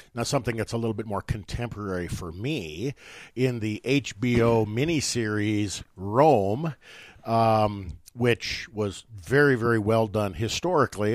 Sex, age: male, 50-69